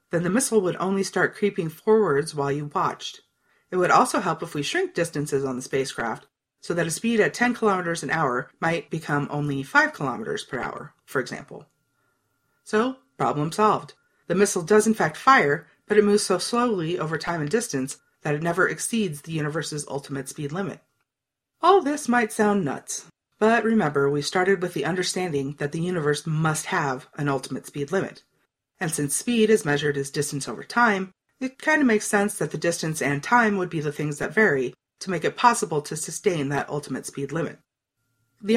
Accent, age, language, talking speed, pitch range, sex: American, 30-49, English, 195 wpm, 145-210 Hz, female